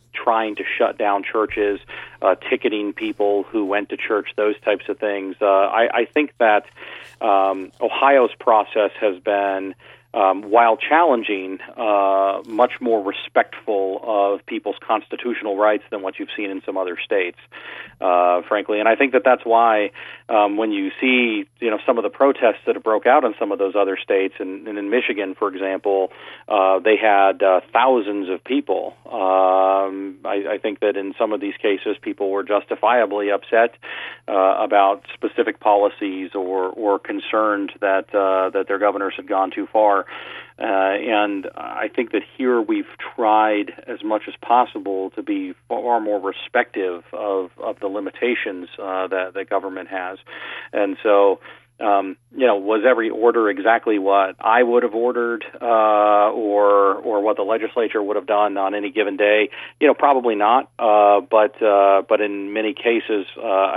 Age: 40-59